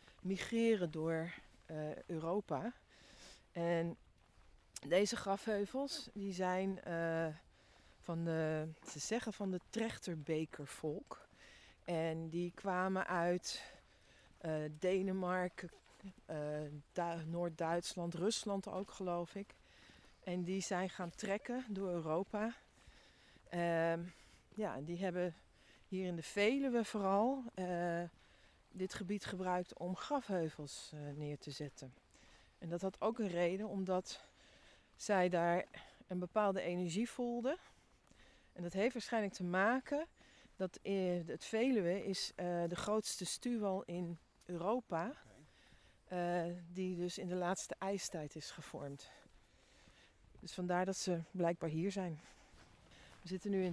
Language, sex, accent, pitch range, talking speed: Dutch, female, Dutch, 165-200 Hz, 120 wpm